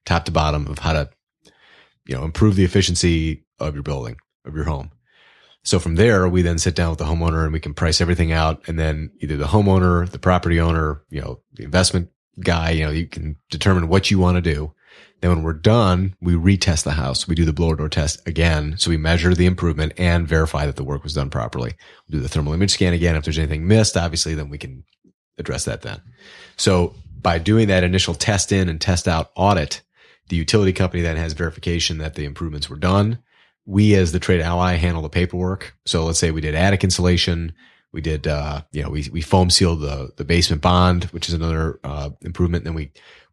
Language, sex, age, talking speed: English, male, 30-49, 225 wpm